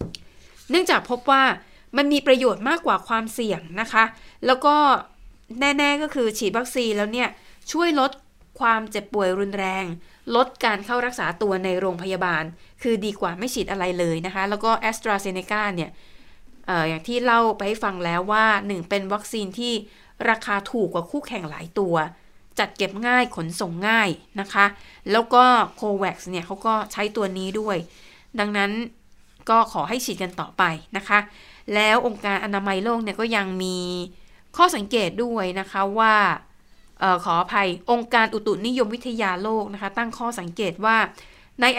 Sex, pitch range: female, 190-235 Hz